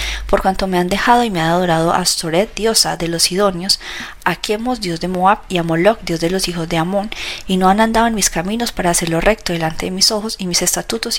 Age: 30-49